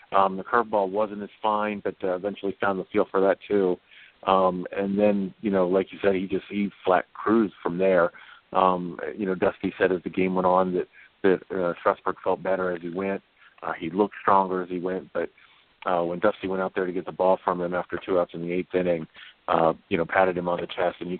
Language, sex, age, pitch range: English, male, 40-59, 90-100 Hz